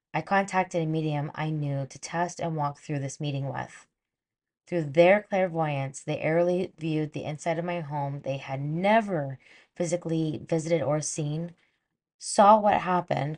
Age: 20-39